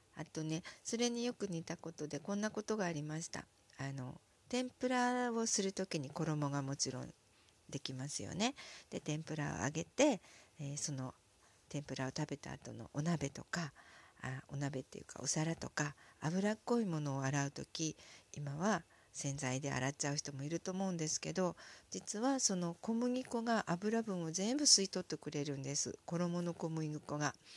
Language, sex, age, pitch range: Japanese, female, 50-69, 140-195 Hz